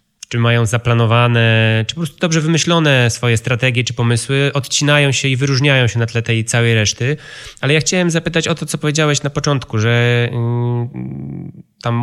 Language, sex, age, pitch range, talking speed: Polish, male, 20-39, 115-135 Hz, 170 wpm